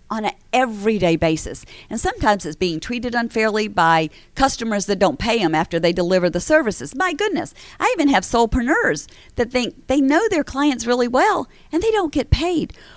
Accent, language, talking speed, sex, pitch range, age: American, English, 185 wpm, female, 175-240 Hz, 50-69